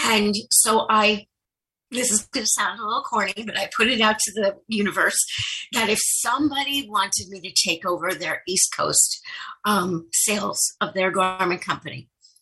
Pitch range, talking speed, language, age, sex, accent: 195-255 Hz, 175 wpm, English, 50-69, female, American